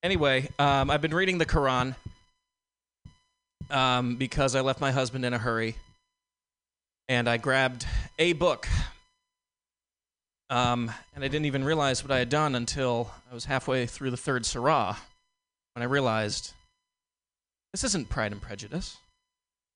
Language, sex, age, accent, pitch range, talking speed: English, male, 20-39, American, 110-155 Hz, 145 wpm